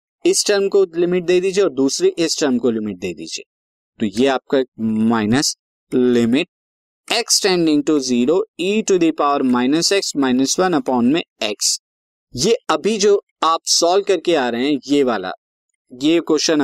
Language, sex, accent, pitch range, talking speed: Hindi, male, native, 130-180 Hz, 135 wpm